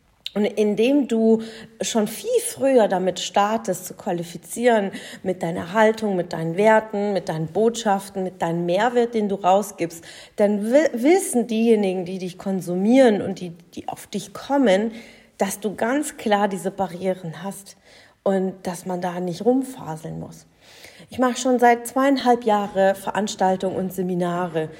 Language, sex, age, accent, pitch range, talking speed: German, female, 40-59, German, 185-245 Hz, 150 wpm